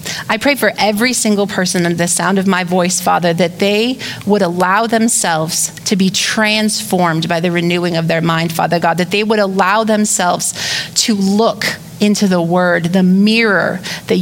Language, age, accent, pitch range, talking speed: English, 30-49, American, 180-220 Hz, 175 wpm